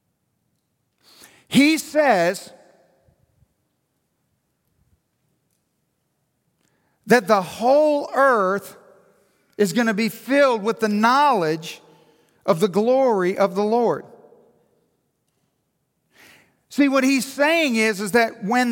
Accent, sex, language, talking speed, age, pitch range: American, male, English, 90 wpm, 50-69, 170-240 Hz